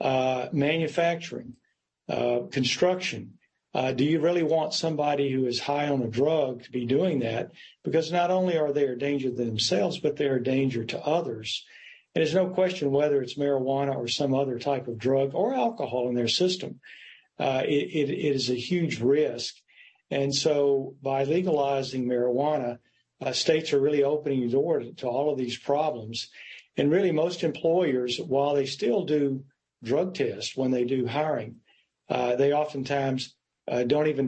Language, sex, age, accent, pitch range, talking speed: English, male, 50-69, American, 125-150 Hz, 170 wpm